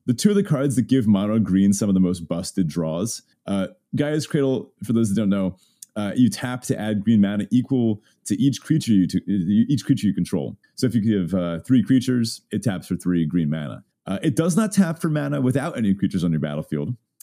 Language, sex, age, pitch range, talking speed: English, male, 30-49, 95-130 Hz, 230 wpm